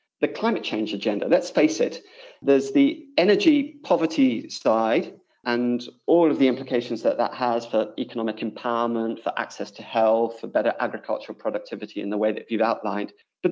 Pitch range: 110-150 Hz